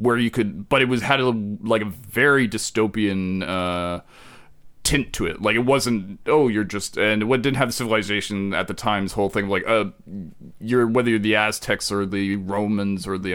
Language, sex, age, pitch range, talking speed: English, male, 30-49, 105-140 Hz, 200 wpm